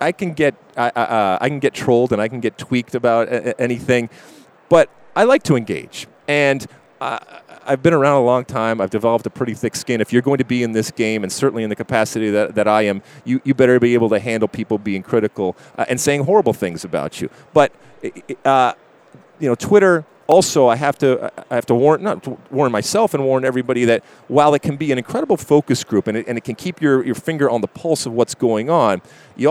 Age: 40-59